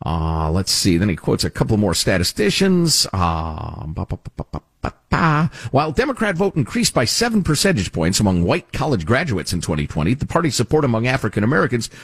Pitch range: 95-150 Hz